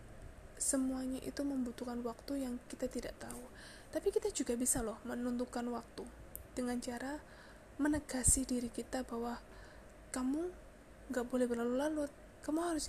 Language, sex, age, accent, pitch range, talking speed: Indonesian, female, 20-39, native, 240-275 Hz, 125 wpm